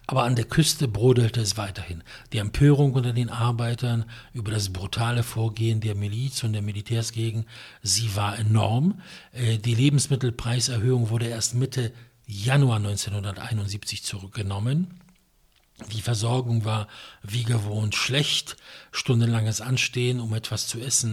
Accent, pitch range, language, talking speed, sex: German, 110-135 Hz, English, 125 wpm, male